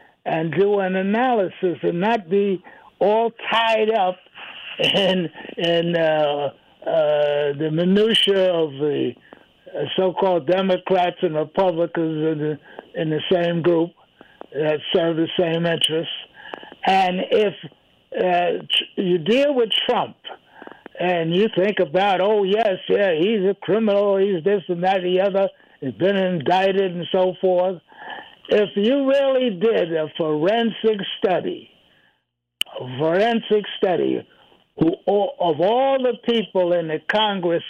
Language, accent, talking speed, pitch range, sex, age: English, American, 125 wpm, 165-200 Hz, male, 60-79